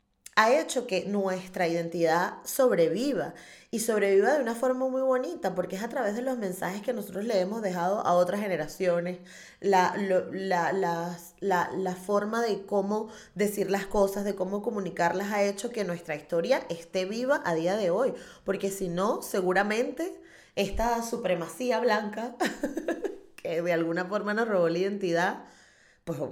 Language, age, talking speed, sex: Spanish, 20-39, 160 wpm, female